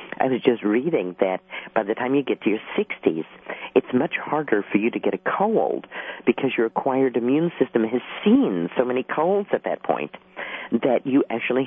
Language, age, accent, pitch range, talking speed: English, 50-69, American, 110-165 Hz, 195 wpm